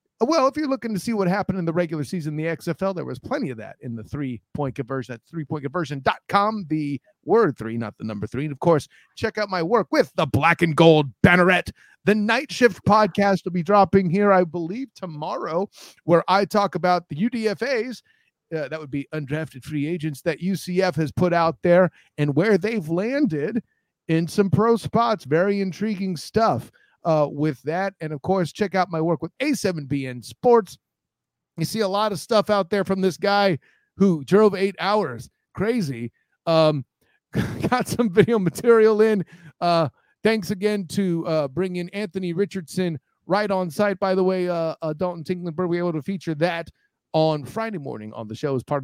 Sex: male